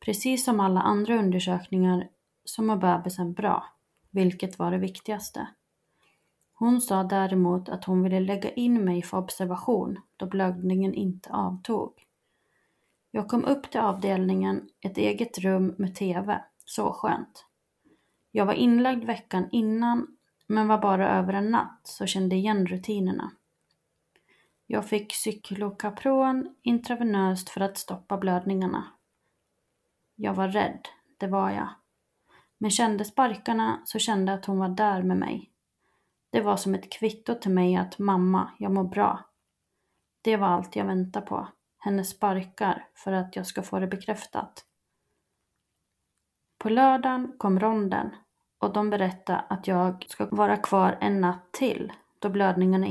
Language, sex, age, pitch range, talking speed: Swedish, female, 30-49, 185-220 Hz, 140 wpm